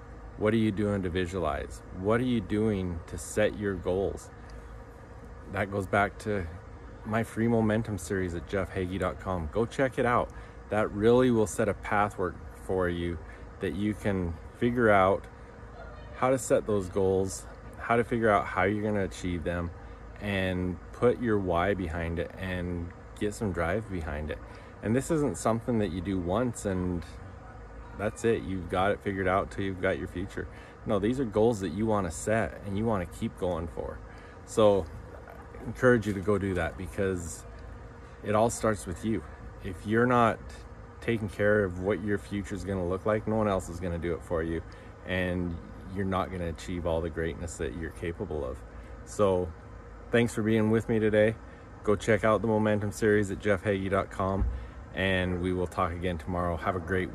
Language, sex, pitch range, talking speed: English, male, 90-110 Hz, 190 wpm